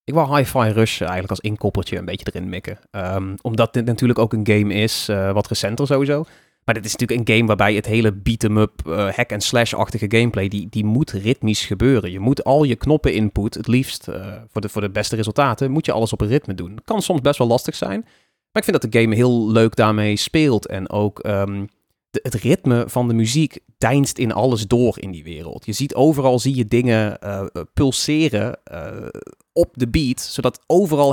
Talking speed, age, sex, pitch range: 210 wpm, 30-49, male, 105-135 Hz